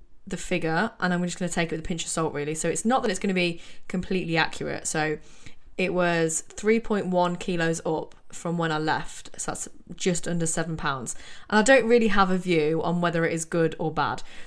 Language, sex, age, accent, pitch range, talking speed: English, female, 20-39, British, 165-195 Hz, 230 wpm